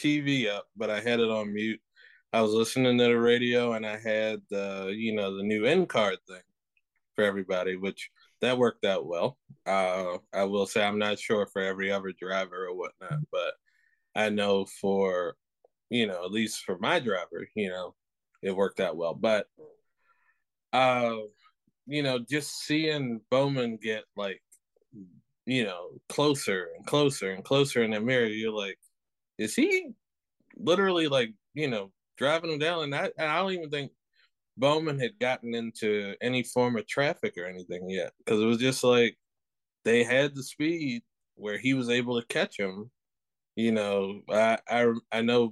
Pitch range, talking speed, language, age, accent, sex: 105-135 Hz, 175 wpm, English, 20-39, American, male